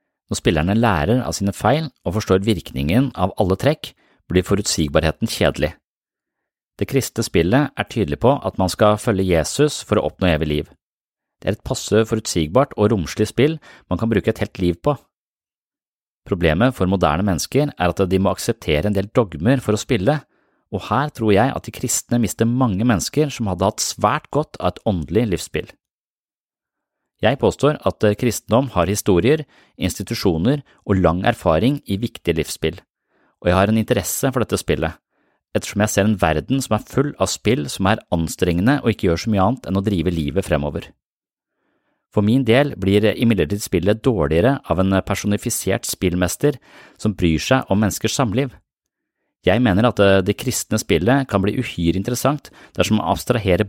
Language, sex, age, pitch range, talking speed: English, male, 30-49, 95-125 Hz, 175 wpm